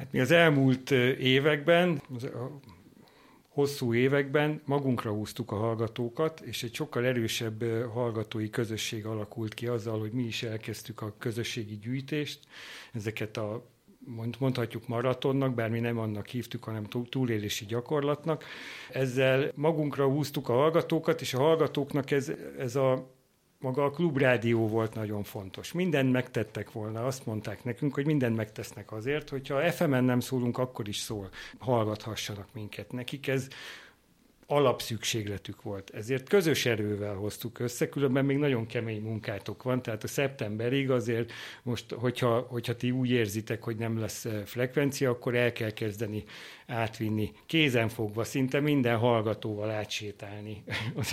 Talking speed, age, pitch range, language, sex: 135 wpm, 50-69, 110-140 Hz, Hungarian, male